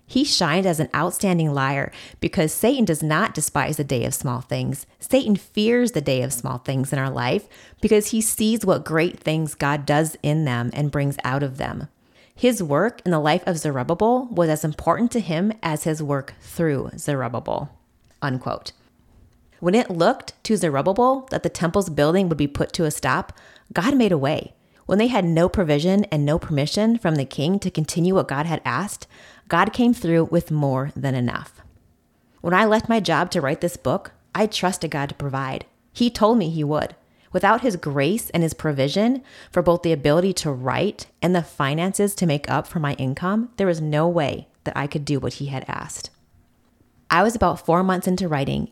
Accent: American